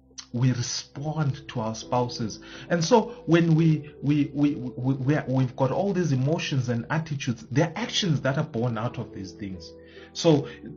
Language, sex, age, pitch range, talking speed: English, male, 30-49, 115-150 Hz, 175 wpm